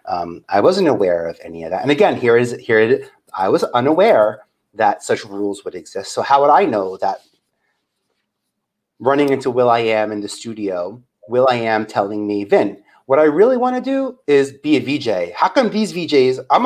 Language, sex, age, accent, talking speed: English, male, 30-49, American, 215 wpm